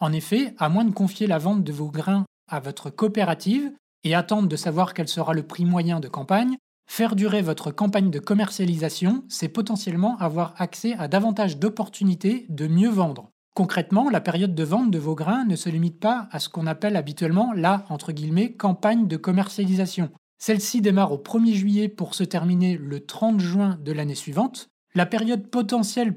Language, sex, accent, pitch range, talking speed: French, male, French, 170-220 Hz, 185 wpm